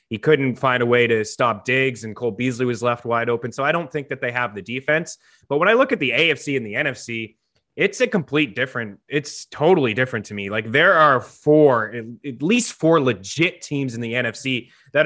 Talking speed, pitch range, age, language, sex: 225 wpm, 125-160 Hz, 20-39, English, male